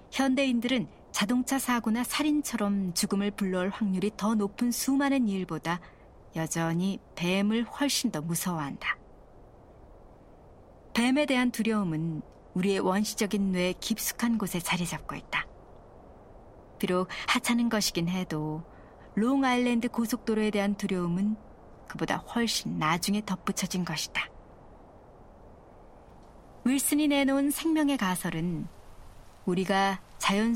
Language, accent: Korean, native